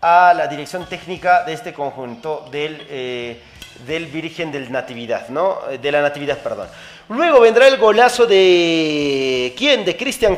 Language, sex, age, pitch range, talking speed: Spanish, male, 40-59, 180-235 Hz, 150 wpm